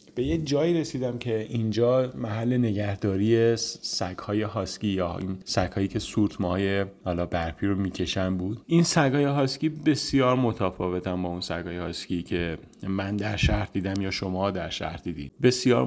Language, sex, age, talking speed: Persian, male, 30-49, 155 wpm